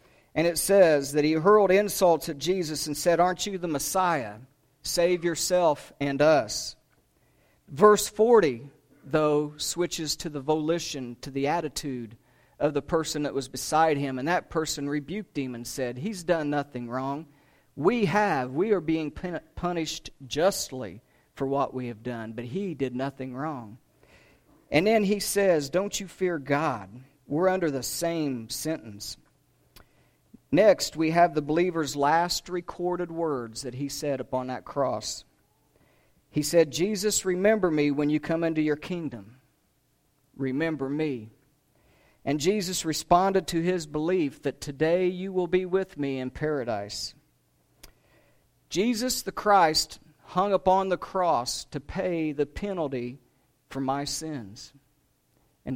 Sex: male